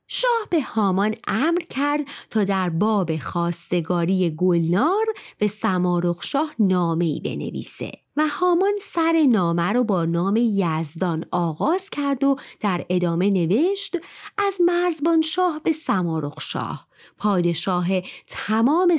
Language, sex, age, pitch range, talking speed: Persian, female, 30-49, 180-275 Hz, 115 wpm